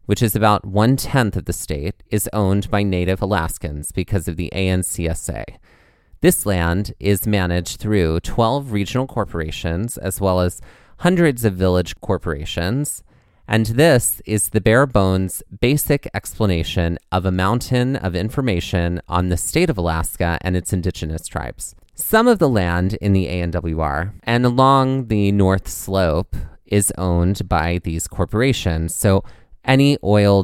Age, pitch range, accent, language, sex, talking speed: 30-49, 85-115 Hz, American, English, male, 145 wpm